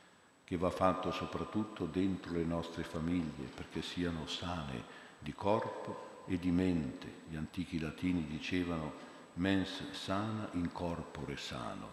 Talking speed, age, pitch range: 125 wpm, 50-69, 80-95 Hz